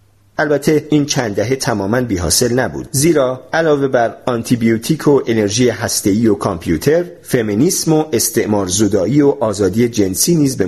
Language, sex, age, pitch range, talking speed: English, male, 40-59, 105-150 Hz, 135 wpm